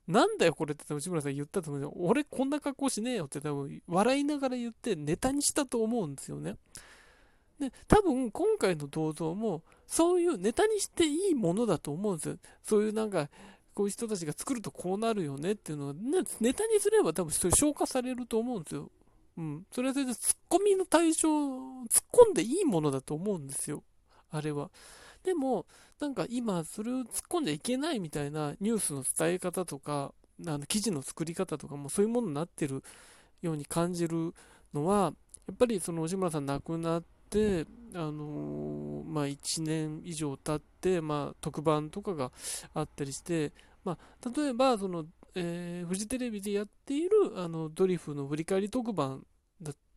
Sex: male